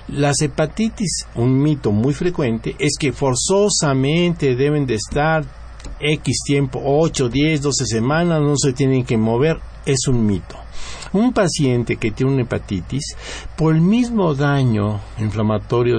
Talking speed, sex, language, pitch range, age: 140 wpm, male, Spanish, 105-150 Hz, 60-79